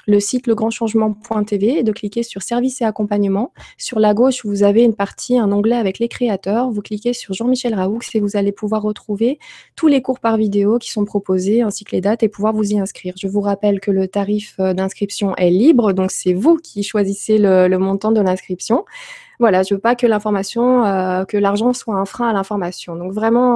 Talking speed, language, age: 215 wpm, French, 20-39